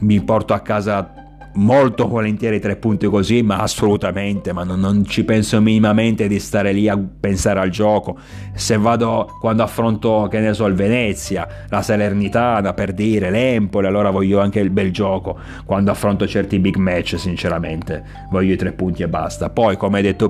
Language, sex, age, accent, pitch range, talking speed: Italian, male, 30-49, native, 95-115 Hz, 180 wpm